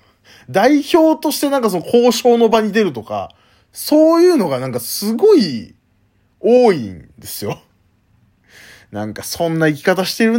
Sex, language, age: male, Japanese, 20-39